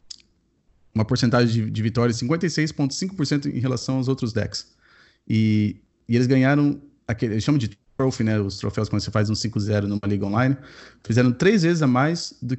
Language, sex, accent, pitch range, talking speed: Portuguese, male, Brazilian, 105-130 Hz, 170 wpm